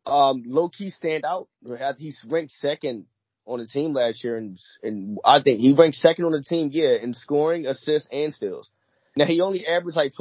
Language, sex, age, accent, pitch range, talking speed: English, male, 20-39, American, 115-150 Hz, 175 wpm